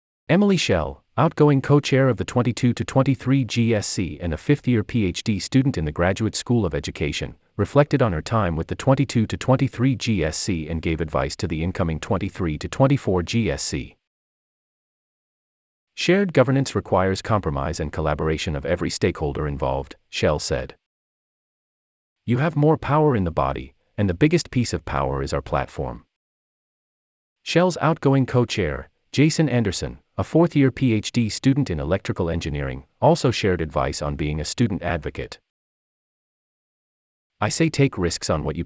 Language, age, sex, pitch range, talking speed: English, 40-59, male, 75-125 Hz, 140 wpm